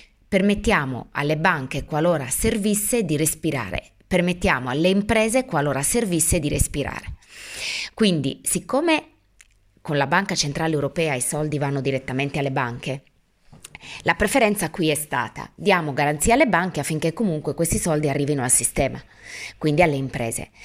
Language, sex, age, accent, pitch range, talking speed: Italian, female, 20-39, native, 140-185 Hz, 135 wpm